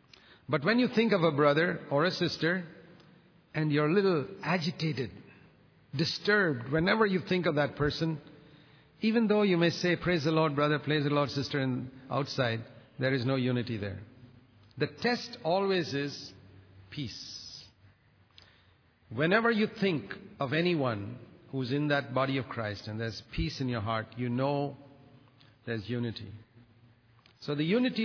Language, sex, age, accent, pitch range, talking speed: English, male, 50-69, Indian, 120-155 Hz, 150 wpm